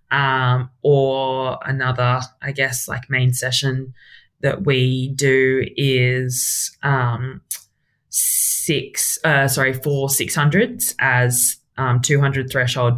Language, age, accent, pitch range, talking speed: English, 20-39, Australian, 125-150 Hz, 100 wpm